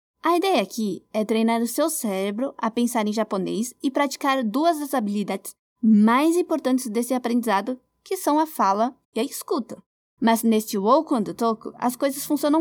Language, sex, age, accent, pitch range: Japanese, female, 20-39, Brazilian, 230-300 Hz